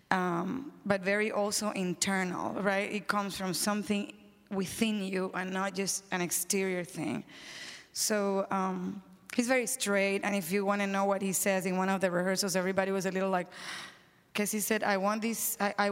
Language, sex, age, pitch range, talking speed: English, female, 20-39, 185-210 Hz, 170 wpm